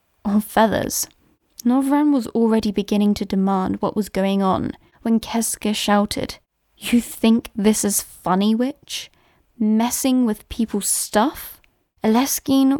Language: English